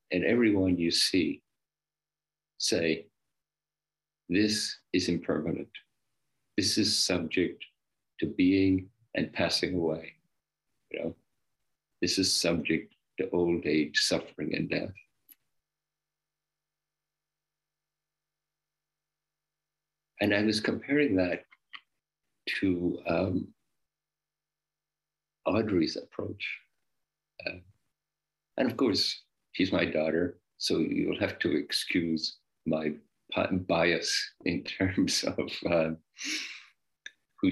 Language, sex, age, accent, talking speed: English, male, 60-79, American, 90 wpm